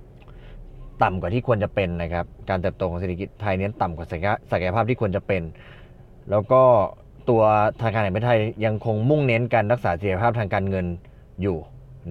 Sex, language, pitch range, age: male, Thai, 95-120 Hz, 20-39